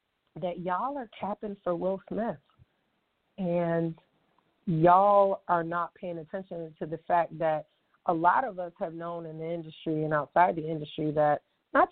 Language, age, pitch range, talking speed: English, 40-59, 160-200 Hz, 160 wpm